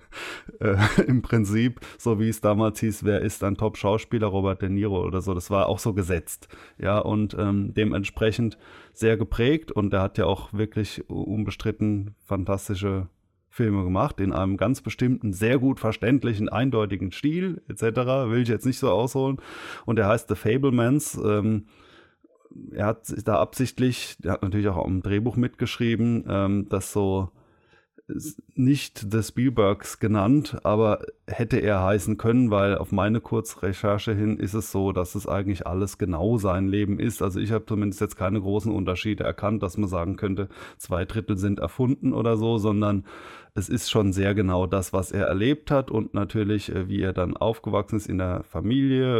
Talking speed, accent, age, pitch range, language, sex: 170 wpm, German, 20-39, 95-115 Hz, German, male